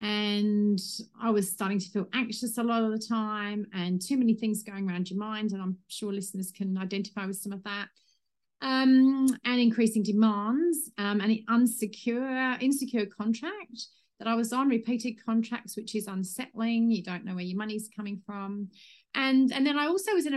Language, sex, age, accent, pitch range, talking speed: English, female, 40-59, British, 205-260 Hz, 185 wpm